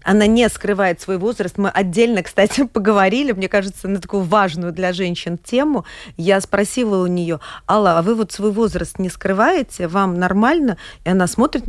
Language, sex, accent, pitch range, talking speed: Russian, female, native, 170-210 Hz, 175 wpm